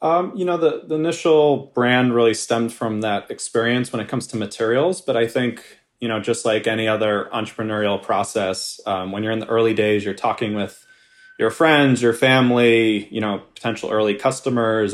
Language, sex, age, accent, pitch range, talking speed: English, male, 20-39, American, 105-120 Hz, 190 wpm